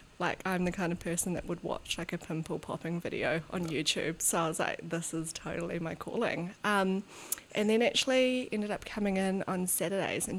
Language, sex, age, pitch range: English, female, 20-39, 170-200 Hz